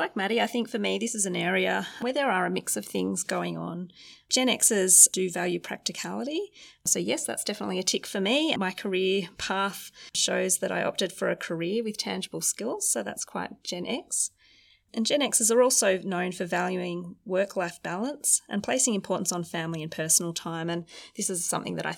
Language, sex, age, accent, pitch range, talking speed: English, female, 30-49, Australian, 175-225 Hz, 200 wpm